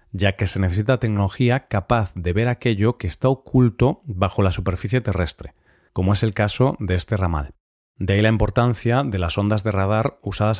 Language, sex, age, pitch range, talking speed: Spanish, male, 40-59, 95-120 Hz, 185 wpm